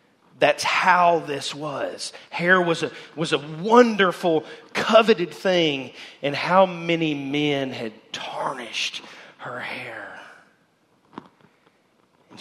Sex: male